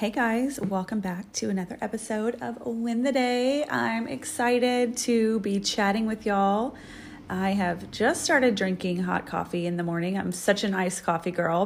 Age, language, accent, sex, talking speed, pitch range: 30-49, English, American, female, 175 wpm, 185-230 Hz